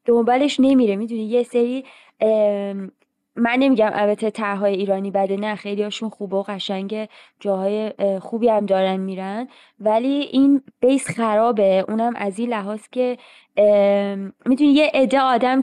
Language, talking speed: Persian, 135 wpm